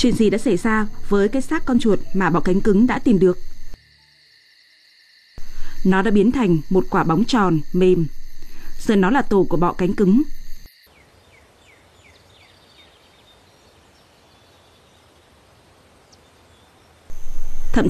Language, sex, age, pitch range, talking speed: Vietnamese, female, 20-39, 140-220 Hz, 115 wpm